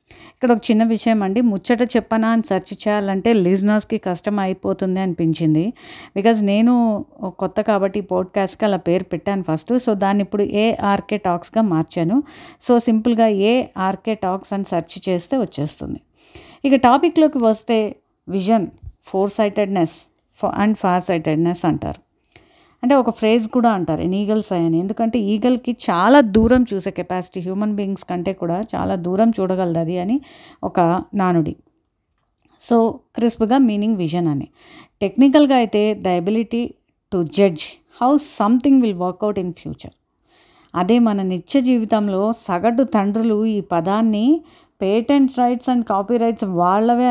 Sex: female